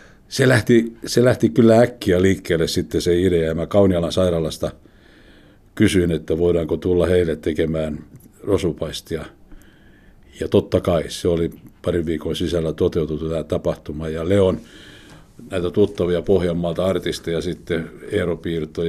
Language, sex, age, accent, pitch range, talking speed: Finnish, male, 60-79, native, 85-105 Hz, 125 wpm